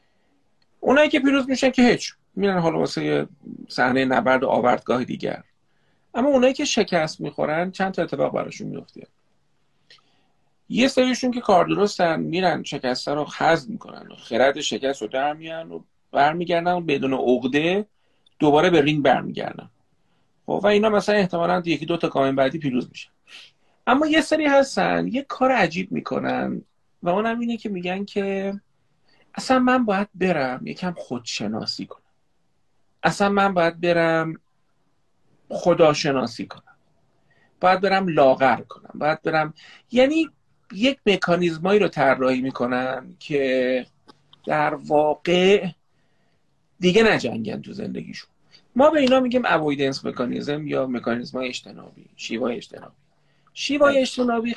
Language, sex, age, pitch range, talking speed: Persian, male, 40-59, 145-230 Hz, 130 wpm